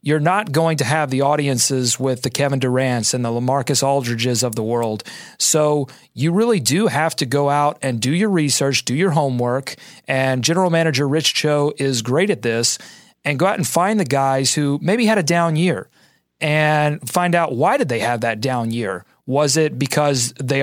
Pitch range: 130-160 Hz